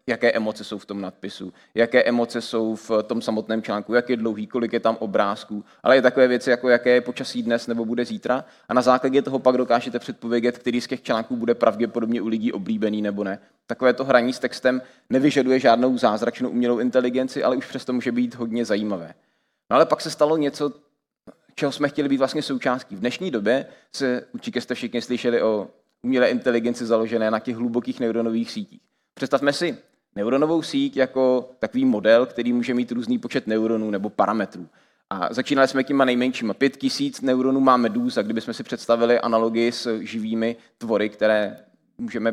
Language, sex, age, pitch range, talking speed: Czech, male, 20-39, 115-135 Hz, 180 wpm